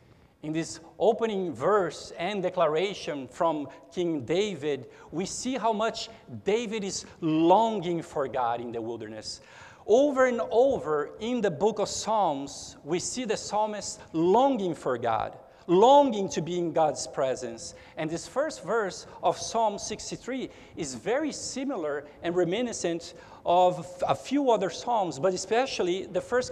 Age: 50-69